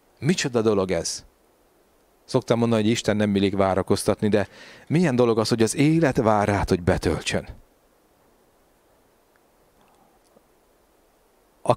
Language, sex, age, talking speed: Hungarian, male, 30-49, 110 wpm